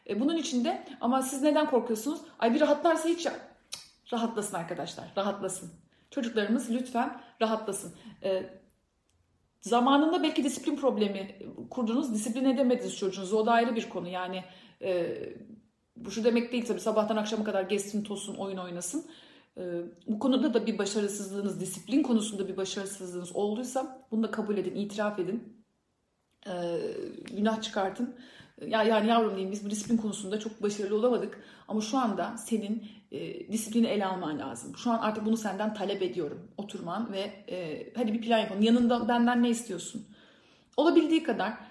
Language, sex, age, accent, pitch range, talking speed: Turkish, female, 40-59, native, 205-270 Hz, 150 wpm